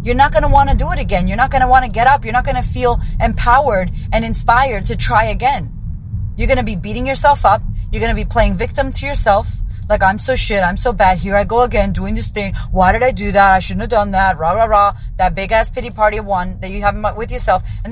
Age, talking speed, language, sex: 30-49, 275 wpm, English, female